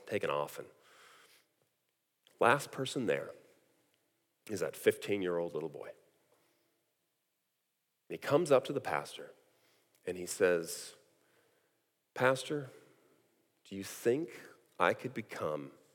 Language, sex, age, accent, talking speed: English, male, 40-59, American, 100 wpm